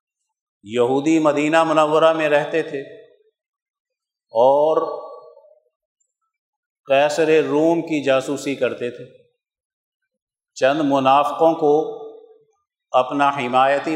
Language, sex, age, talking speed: Urdu, male, 50-69, 75 wpm